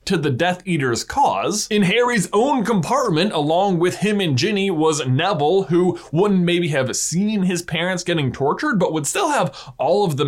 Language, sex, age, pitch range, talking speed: English, male, 20-39, 145-205 Hz, 185 wpm